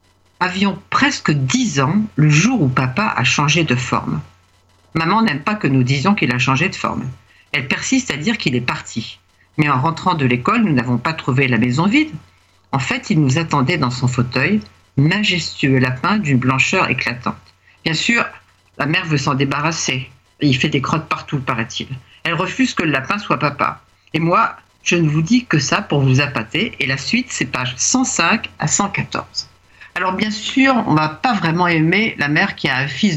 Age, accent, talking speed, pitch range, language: 50-69, French, 195 wpm, 135-190 Hz, French